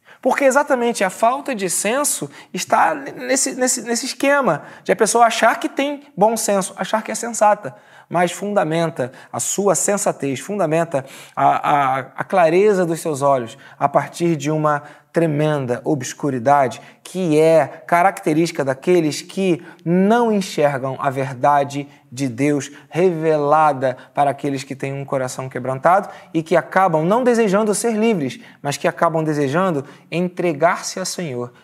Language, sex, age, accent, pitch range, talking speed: Portuguese, male, 20-39, Brazilian, 145-190 Hz, 140 wpm